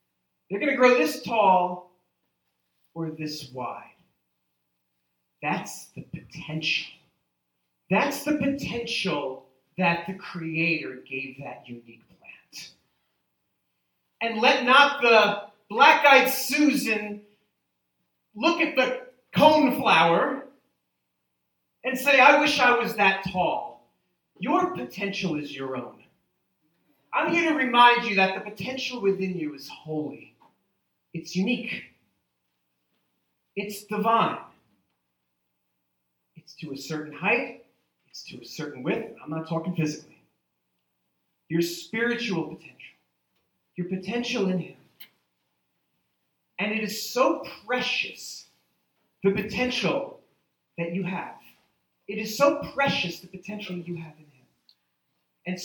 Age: 40-59